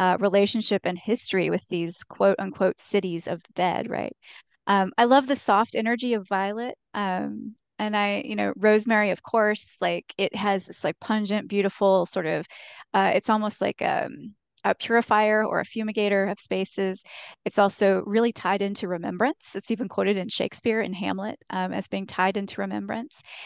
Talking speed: 175 wpm